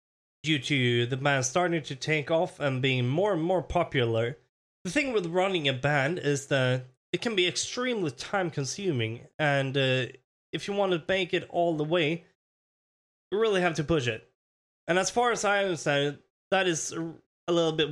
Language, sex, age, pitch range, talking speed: English, male, 20-39, 125-175 Hz, 185 wpm